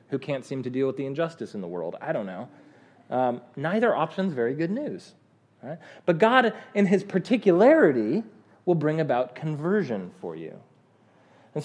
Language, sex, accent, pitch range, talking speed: English, male, American, 130-190 Hz, 170 wpm